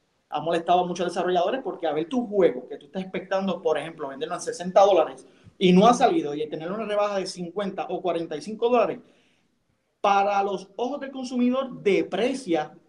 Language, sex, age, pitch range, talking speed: Spanish, male, 30-49, 165-200 Hz, 180 wpm